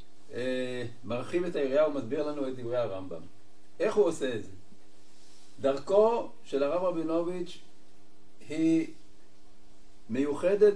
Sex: male